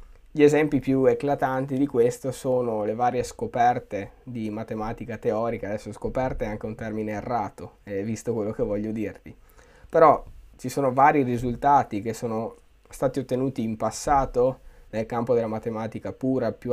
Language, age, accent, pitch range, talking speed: Italian, 20-39, native, 110-135 Hz, 155 wpm